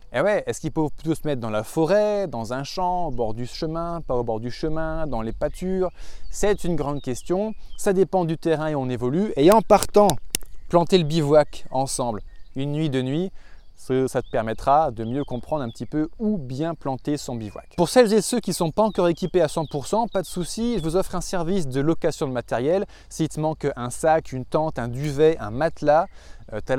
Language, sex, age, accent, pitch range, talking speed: French, male, 20-39, French, 130-180 Hz, 225 wpm